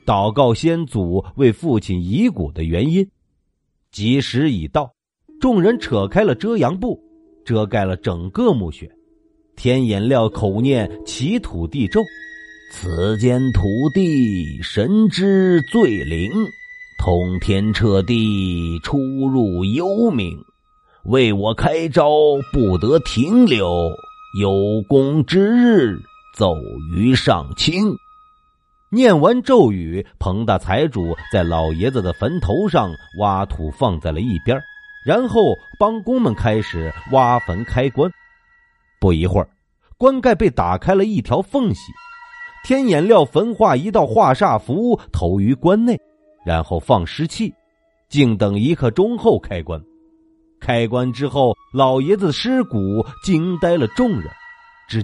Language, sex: Chinese, male